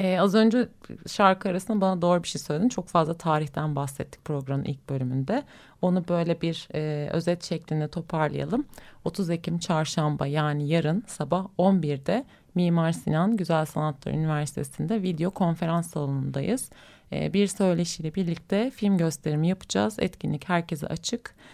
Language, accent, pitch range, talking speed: Turkish, native, 150-185 Hz, 135 wpm